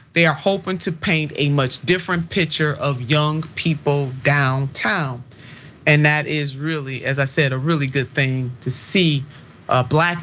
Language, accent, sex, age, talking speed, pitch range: English, American, male, 40-59, 160 wpm, 140-195 Hz